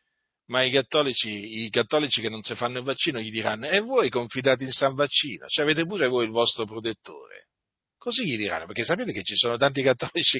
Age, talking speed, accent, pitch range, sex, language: 40-59, 210 wpm, native, 125-200 Hz, male, Italian